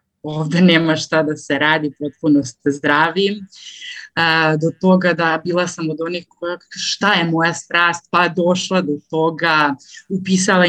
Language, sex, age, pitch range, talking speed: Croatian, female, 30-49, 160-195 Hz, 150 wpm